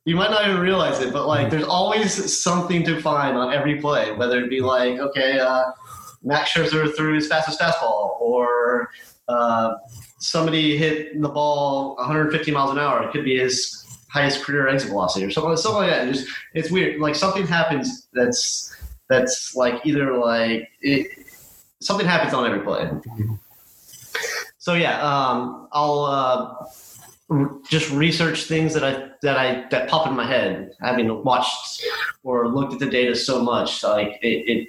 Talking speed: 165 wpm